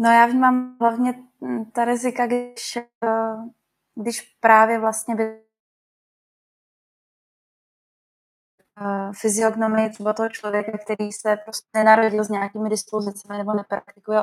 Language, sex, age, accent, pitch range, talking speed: Czech, female, 20-39, native, 205-220 Hz, 95 wpm